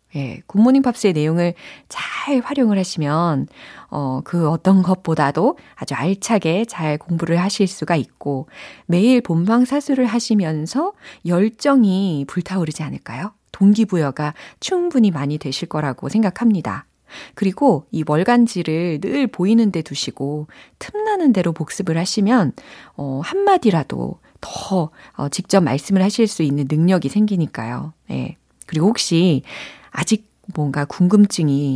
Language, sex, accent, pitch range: Korean, female, native, 150-225 Hz